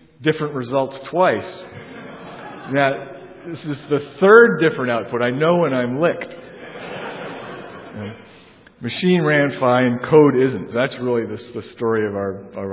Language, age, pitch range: English, 50-69, 110-150 Hz